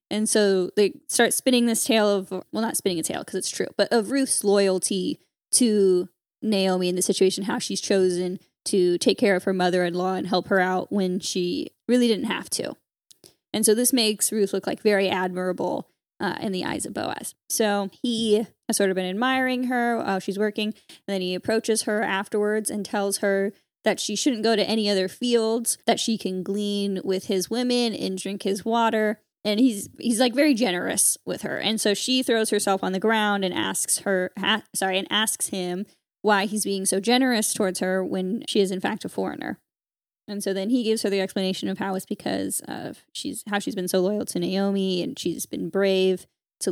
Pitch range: 190-225 Hz